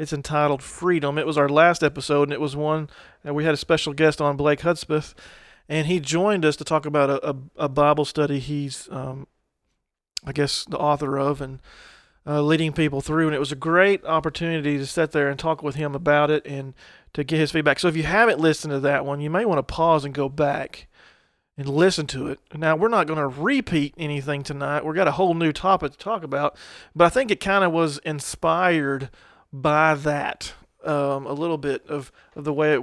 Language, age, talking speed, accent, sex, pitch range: English, 40-59, 220 wpm, American, male, 145-160 Hz